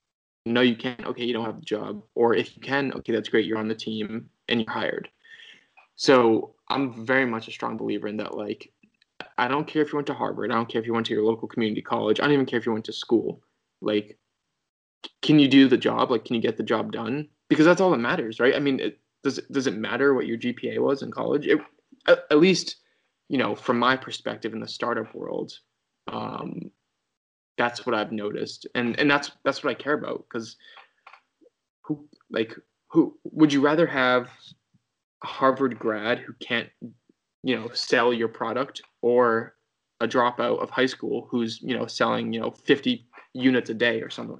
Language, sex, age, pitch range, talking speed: English, male, 20-39, 115-140 Hz, 205 wpm